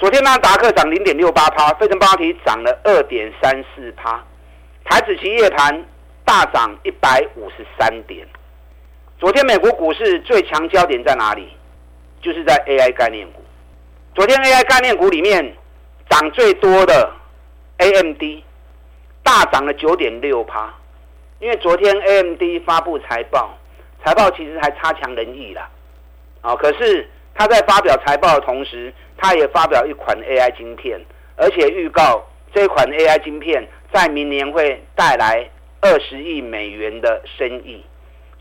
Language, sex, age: Chinese, male, 50-69